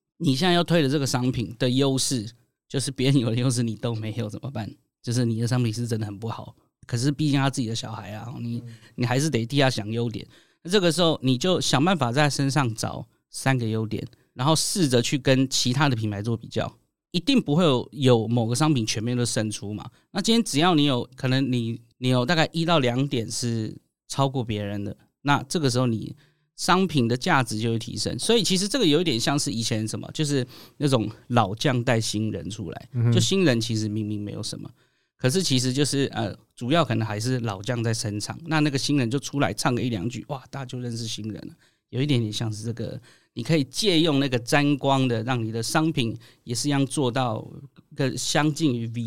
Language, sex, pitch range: Chinese, male, 115-145 Hz